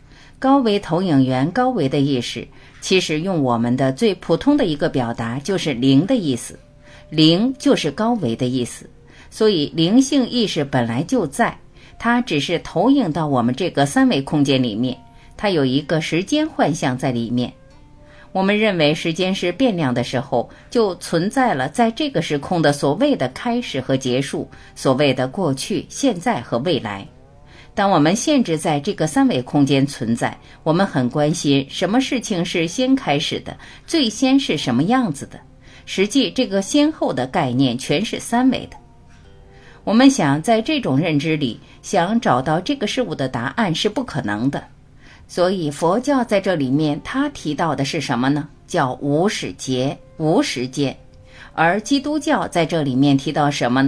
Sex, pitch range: female, 135-220 Hz